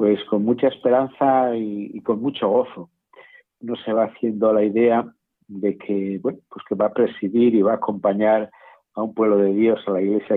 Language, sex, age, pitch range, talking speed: Spanish, male, 50-69, 100-120 Hz, 190 wpm